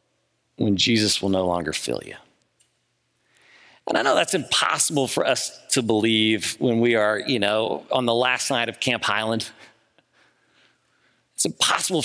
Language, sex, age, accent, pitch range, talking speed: English, male, 40-59, American, 110-140 Hz, 150 wpm